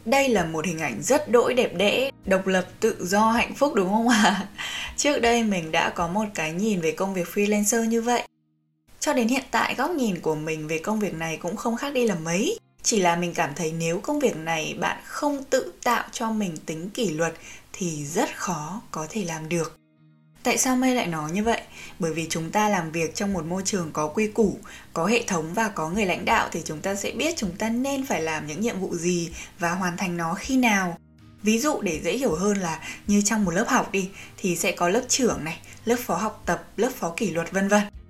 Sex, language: female, Vietnamese